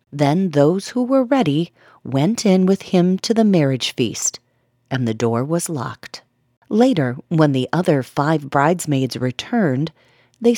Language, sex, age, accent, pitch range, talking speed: English, female, 40-59, American, 125-210 Hz, 145 wpm